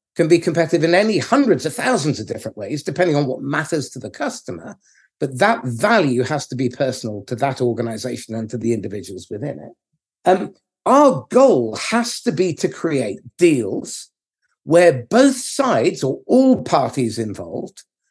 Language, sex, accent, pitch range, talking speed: English, male, British, 130-205 Hz, 165 wpm